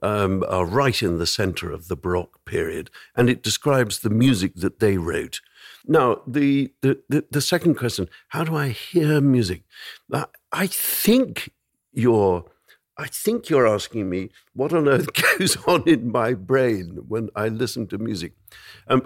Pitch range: 105-145 Hz